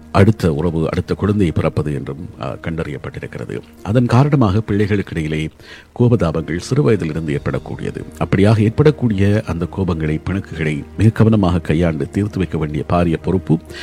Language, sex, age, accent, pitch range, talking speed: Tamil, male, 50-69, native, 80-100 Hz, 115 wpm